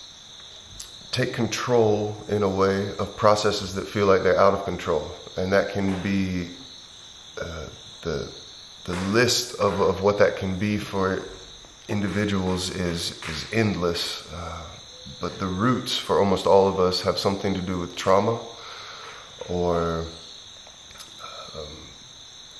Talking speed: 135 wpm